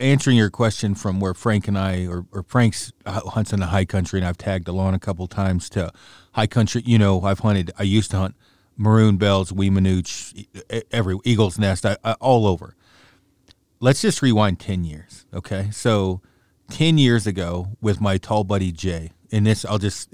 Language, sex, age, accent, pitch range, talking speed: English, male, 40-59, American, 95-115 Hz, 200 wpm